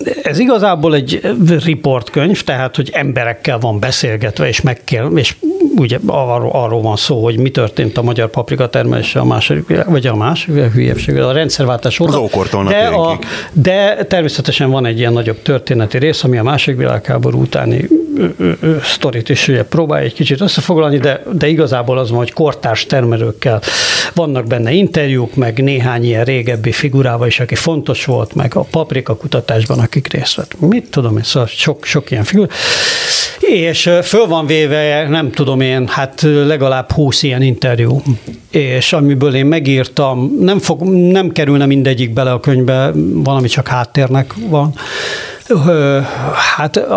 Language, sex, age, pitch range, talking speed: Hungarian, male, 60-79, 125-160 Hz, 150 wpm